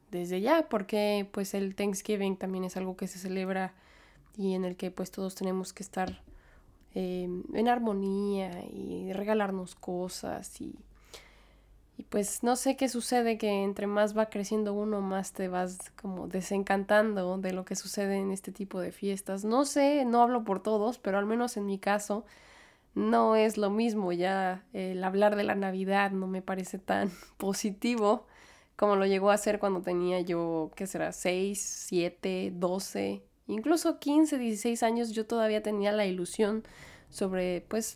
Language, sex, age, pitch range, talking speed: Spanish, female, 20-39, 185-225 Hz, 165 wpm